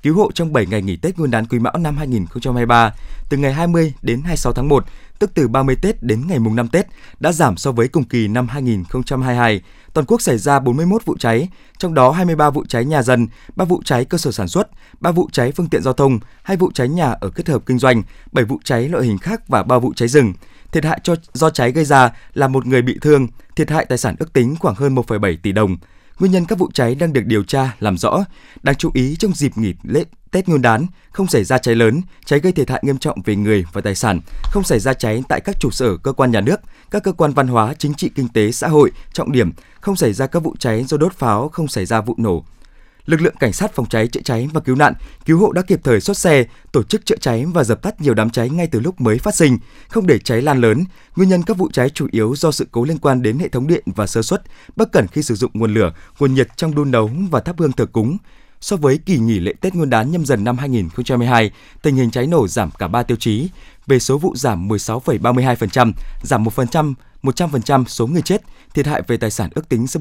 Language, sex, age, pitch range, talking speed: Vietnamese, male, 20-39, 115-160 Hz, 260 wpm